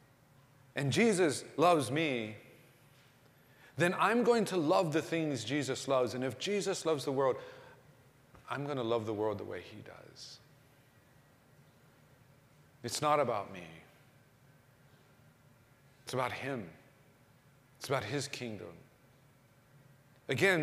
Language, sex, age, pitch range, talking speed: English, male, 40-59, 130-165 Hz, 120 wpm